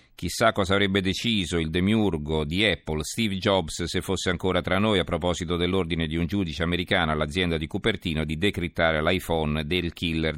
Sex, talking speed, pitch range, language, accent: male, 175 wpm, 80-95 Hz, Italian, native